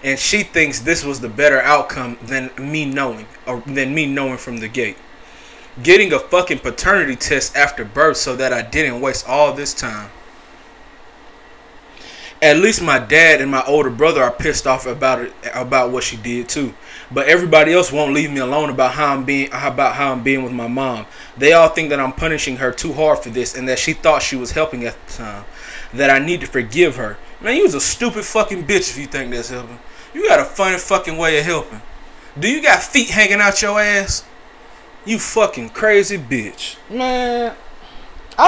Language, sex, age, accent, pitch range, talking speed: English, male, 20-39, American, 130-195 Hz, 205 wpm